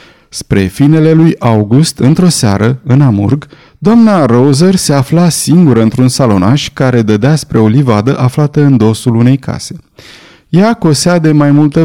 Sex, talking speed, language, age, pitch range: male, 150 wpm, Romanian, 30-49, 115-160 Hz